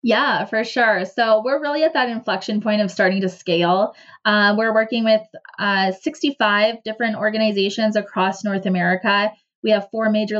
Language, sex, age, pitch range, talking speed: English, female, 20-39, 195-220 Hz, 165 wpm